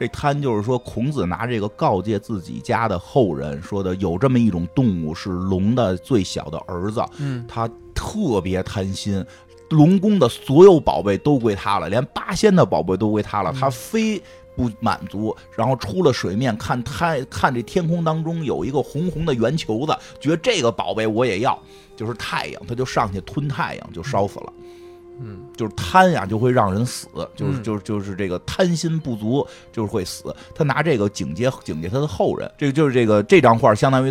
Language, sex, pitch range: Chinese, male, 95-135 Hz